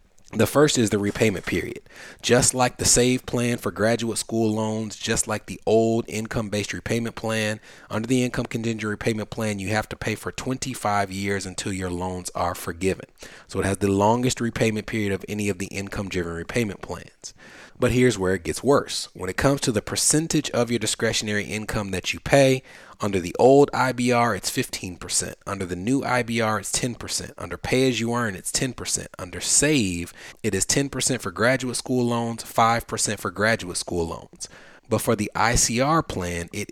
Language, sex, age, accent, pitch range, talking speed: English, male, 30-49, American, 95-120 Hz, 185 wpm